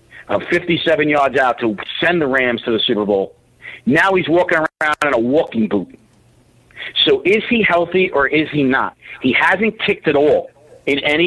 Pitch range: 145-185 Hz